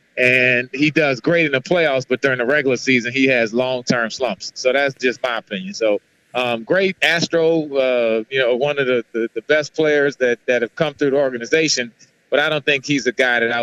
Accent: American